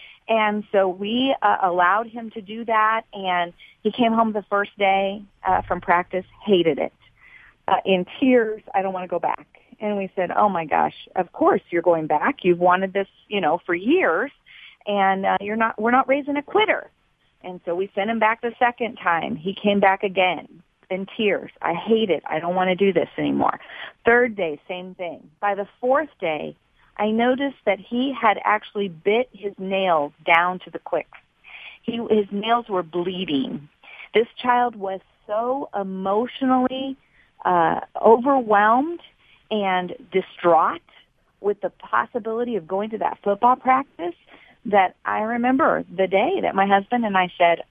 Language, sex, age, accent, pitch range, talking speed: English, female, 40-59, American, 185-235 Hz, 170 wpm